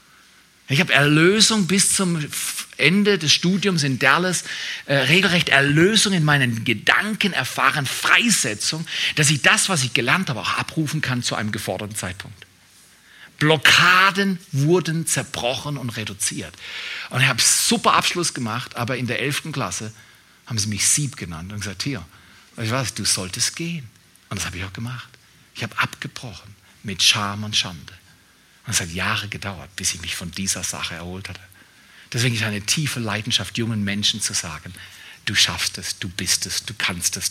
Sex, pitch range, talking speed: male, 95-145 Hz, 165 wpm